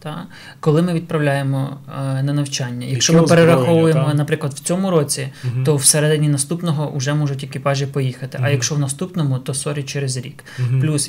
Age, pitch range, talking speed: 20-39, 135-160 Hz, 155 wpm